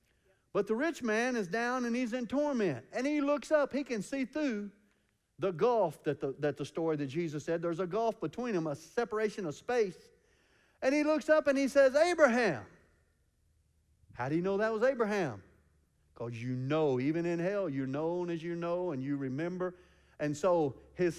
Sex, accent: male, American